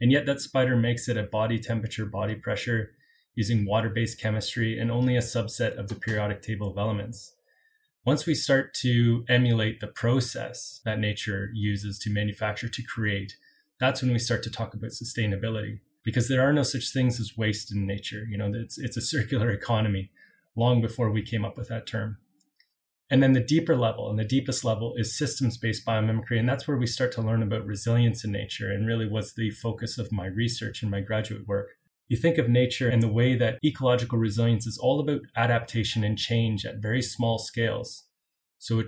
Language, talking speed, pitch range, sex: English, 200 wpm, 110-125 Hz, male